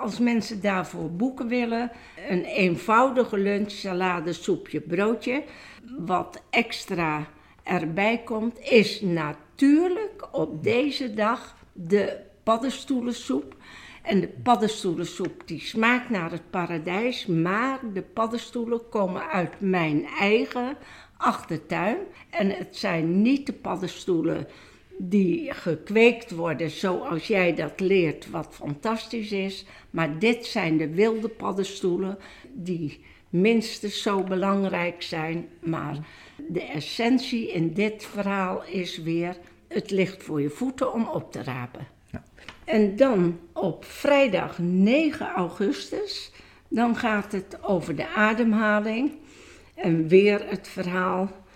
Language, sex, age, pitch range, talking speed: Dutch, female, 60-79, 180-235 Hz, 115 wpm